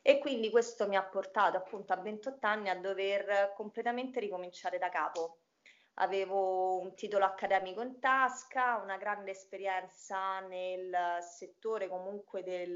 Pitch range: 185-215 Hz